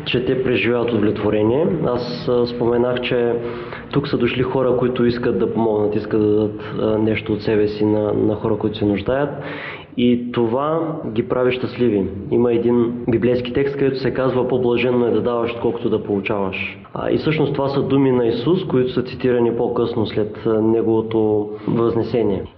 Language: Bulgarian